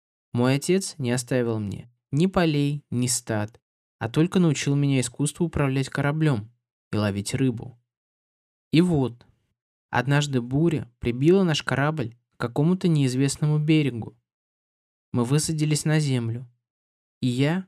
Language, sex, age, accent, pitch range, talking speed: Russian, male, 20-39, native, 120-150 Hz, 120 wpm